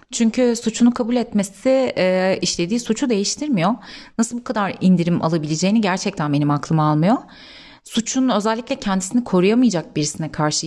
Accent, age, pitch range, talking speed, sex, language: native, 30-49, 180-255 Hz, 130 wpm, female, Turkish